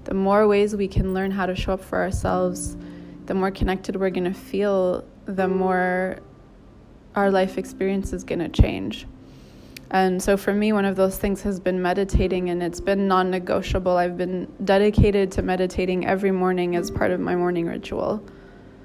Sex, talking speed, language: female, 170 wpm, English